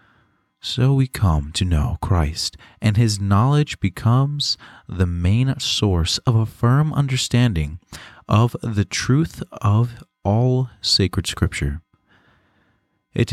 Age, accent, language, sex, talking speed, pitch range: 30-49, American, English, male, 115 wpm, 95-120 Hz